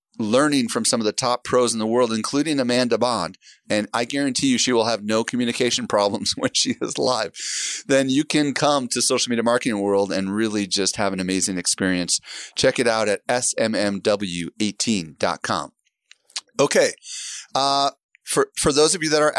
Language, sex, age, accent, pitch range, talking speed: English, male, 30-49, American, 105-140 Hz, 175 wpm